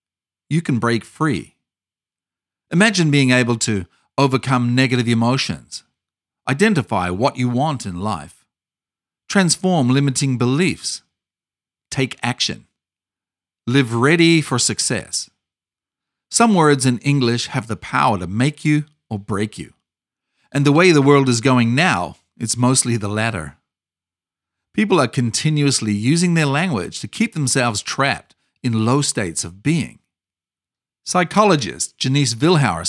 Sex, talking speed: male, 125 wpm